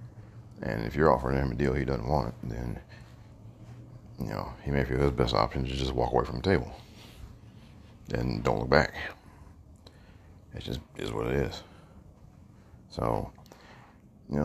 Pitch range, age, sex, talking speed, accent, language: 65-105 Hz, 40-59, male, 160 wpm, American, English